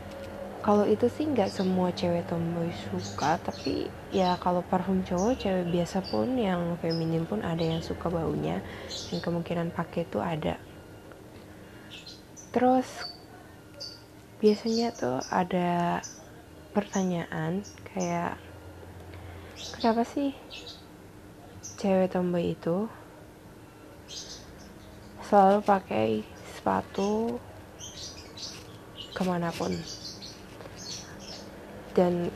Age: 20-39